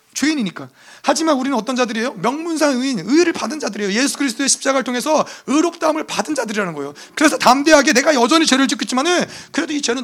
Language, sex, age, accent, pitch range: Korean, male, 30-49, native, 210-290 Hz